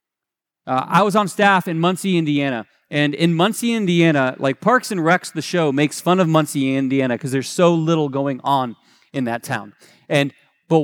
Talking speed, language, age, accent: 190 wpm, English, 30-49, American